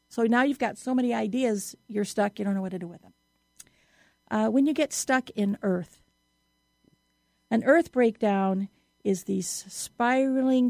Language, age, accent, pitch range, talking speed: English, 50-69, American, 200-245 Hz, 170 wpm